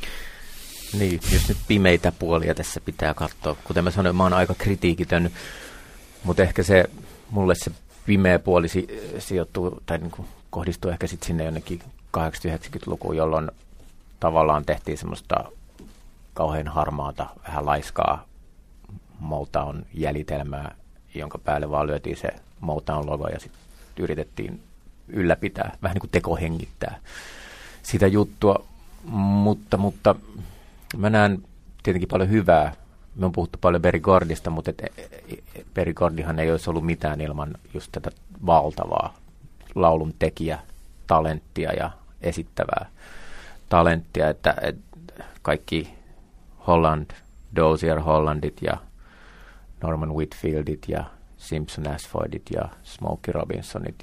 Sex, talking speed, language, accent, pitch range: male, 110 wpm, Finnish, native, 75-90 Hz